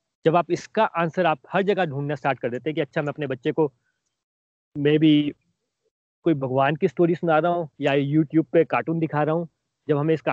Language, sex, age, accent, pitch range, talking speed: Hindi, male, 30-49, native, 140-185 Hz, 215 wpm